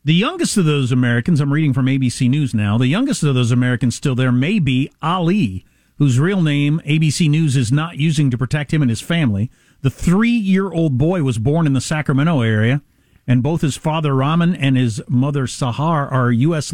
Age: 50-69